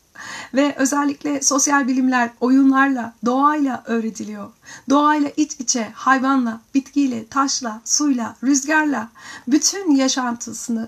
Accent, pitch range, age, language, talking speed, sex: native, 230-275 Hz, 40-59, Turkish, 95 wpm, female